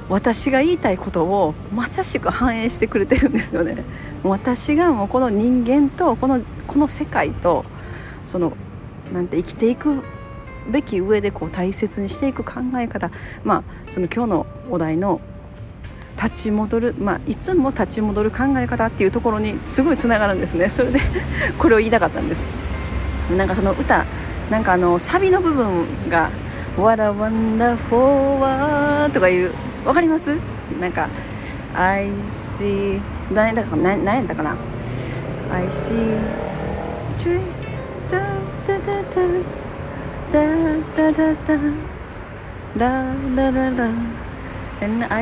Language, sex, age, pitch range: Japanese, female, 40-59, 190-270 Hz